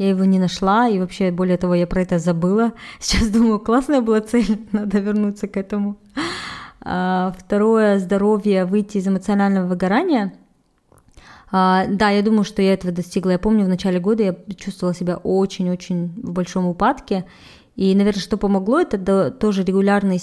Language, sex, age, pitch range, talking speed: Russian, female, 20-39, 180-210 Hz, 155 wpm